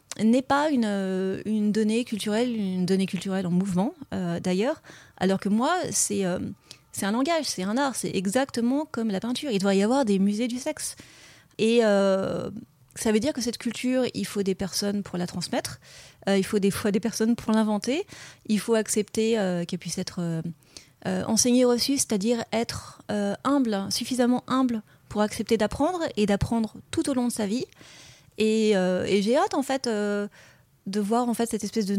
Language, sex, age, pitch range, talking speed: French, female, 30-49, 190-230 Hz, 195 wpm